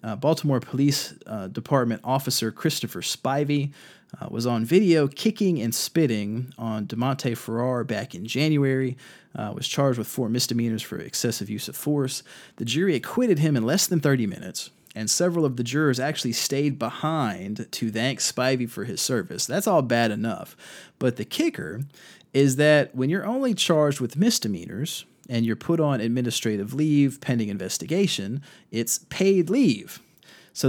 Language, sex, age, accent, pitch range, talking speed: English, male, 30-49, American, 115-160 Hz, 160 wpm